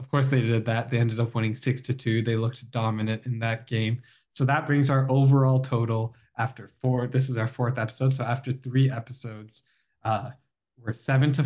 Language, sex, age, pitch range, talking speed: English, male, 10-29, 115-140 Hz, 205 wpm